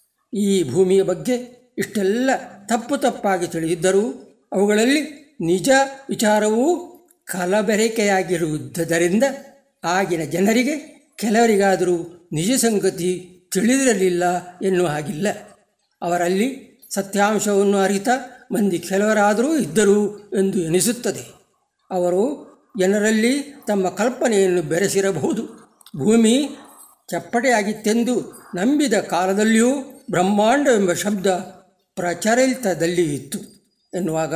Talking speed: 70 wpm